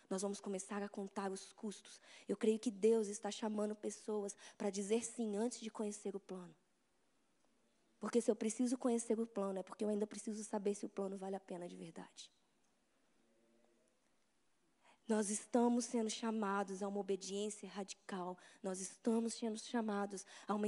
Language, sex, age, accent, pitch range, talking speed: Portuguese, female, 20-39, Brazilian, 210-290 Hz, 165 wpm